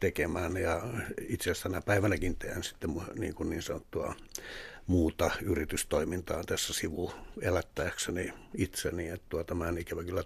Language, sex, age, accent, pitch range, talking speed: Finnish, male, 60-79, native, 90-105 Hz, 140 wpm